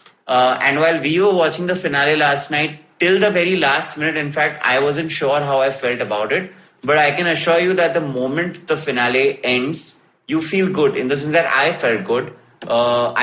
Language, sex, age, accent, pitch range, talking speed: English, male, 30-49, Indian, 130-175 Hz, 215 wpm